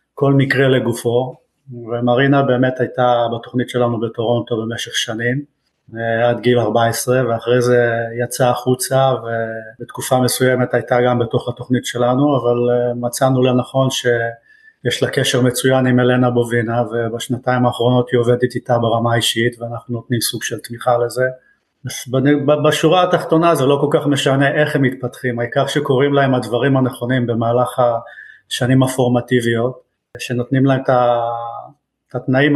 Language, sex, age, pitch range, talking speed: Hebrew, male, 30-49, 120-135 Hz, 130 wpm